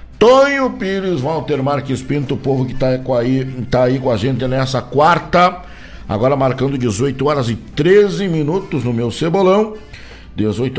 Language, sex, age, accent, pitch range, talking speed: Portuguese, male, 60-79, Brazilian, 120-155 Hz, 155 wpm